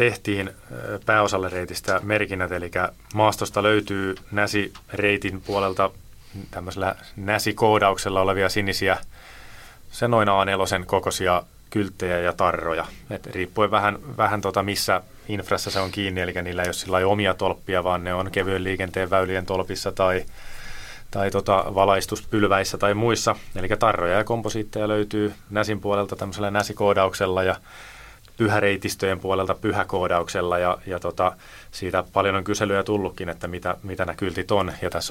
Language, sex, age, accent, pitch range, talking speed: Finnish, male, 30-49, native, 95-105 Hz, 130 wpm